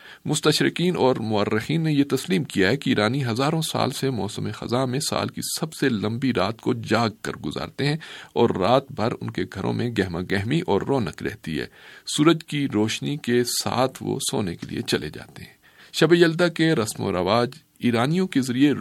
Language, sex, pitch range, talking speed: Urdu, male, 105-145 Hz, 190 wpm